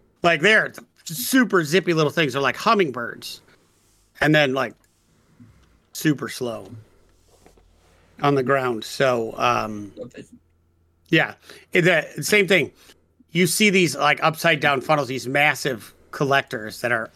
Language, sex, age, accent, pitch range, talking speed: English, male, 40-59, American, 115-150 Hz, 120 wpm